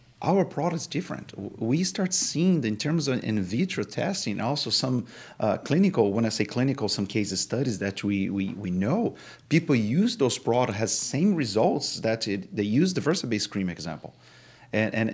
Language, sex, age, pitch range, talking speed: English, male, 40-59, 100-125 Hz, 185 wpm